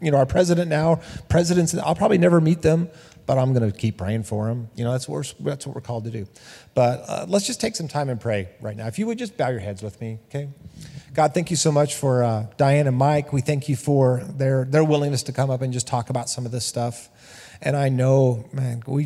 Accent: American